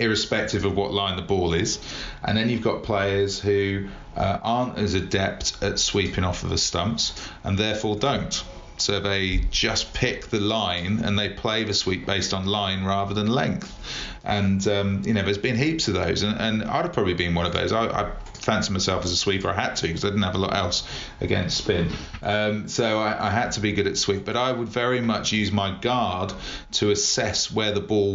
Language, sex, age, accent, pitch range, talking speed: English, male, 40-59, British, 95-105 Hz, 220 wpm